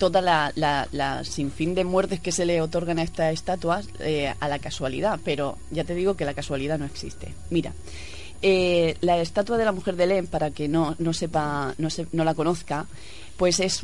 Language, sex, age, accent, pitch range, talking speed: Spanish, female, 20-39, Spanish, 155-180 Hz, 210 wpm